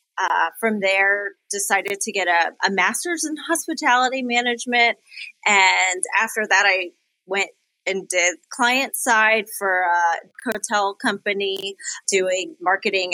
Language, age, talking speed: English, 30-49, 125 wpm